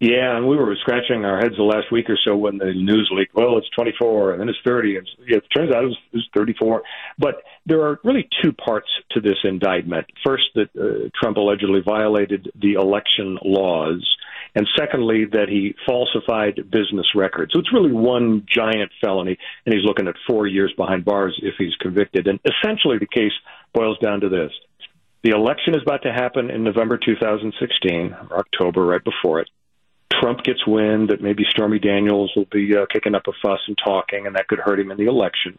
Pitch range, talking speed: 100-115 Hz, 200 wpm